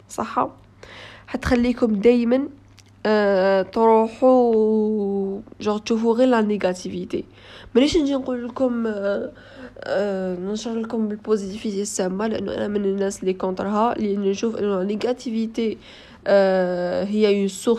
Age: 20-39